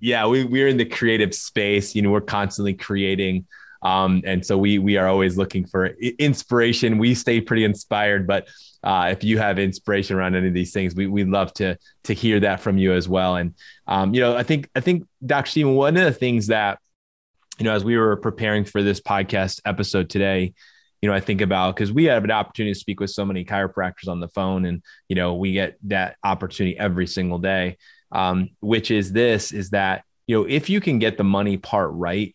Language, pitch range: English, 95-110 Hz